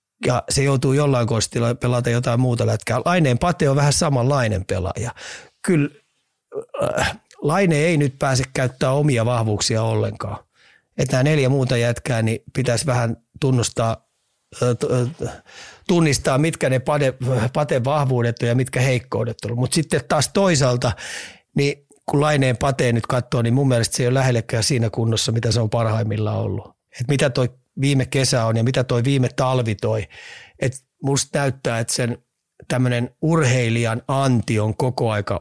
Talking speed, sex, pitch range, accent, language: 155 wpm, male, 115-135 Hz, native, Finnish